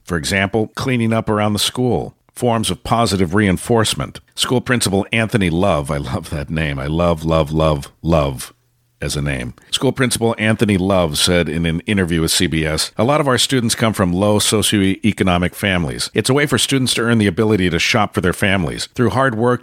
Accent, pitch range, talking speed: American, 80-105 Hz, 195 wpm